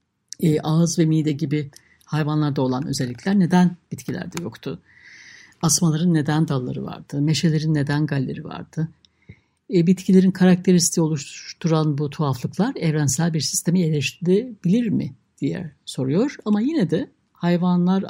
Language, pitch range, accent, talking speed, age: Turkish, 150-195 Hz, native, 120 wpm, 60-79